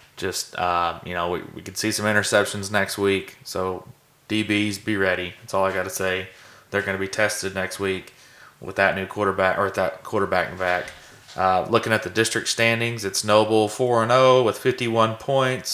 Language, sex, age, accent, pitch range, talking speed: English, male, 30-49, American, 95-115 Hz, 190 wpm